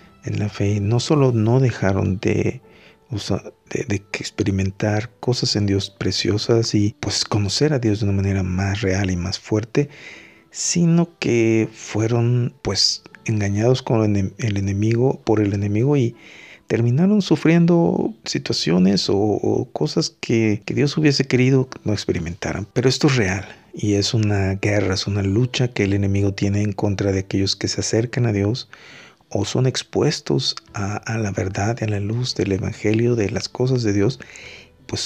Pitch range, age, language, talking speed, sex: 105-145 Hz, 50-69, Spanish, 165 wpm, male